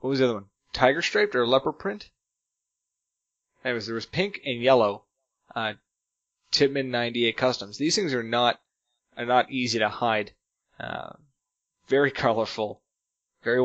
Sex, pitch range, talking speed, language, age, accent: male, 110-135 Hz, 145 wpm, English, 20-39, American